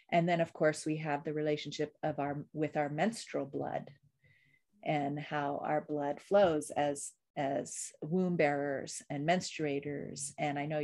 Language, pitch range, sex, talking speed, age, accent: English, 150-175 Hz, female, 155 wpm, 40-59, American